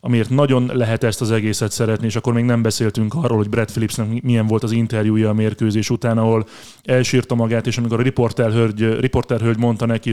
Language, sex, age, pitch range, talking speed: Hungarian, male, 20-39, 110-125 Hz, 190 wpm